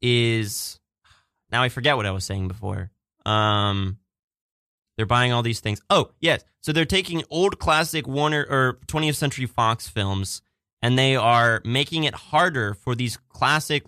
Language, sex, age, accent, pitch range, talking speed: English, male, 20-39, American, 110-140 Hz, 160 wpm